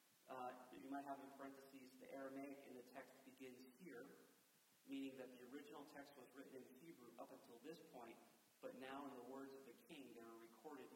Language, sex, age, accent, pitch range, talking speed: English, male, 40-59, American, 135-185 Hz, 205 wpm